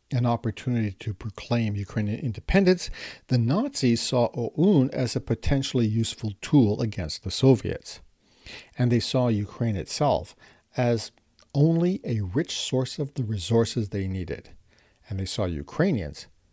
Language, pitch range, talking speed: English, 100-130 Hz, 135 wpm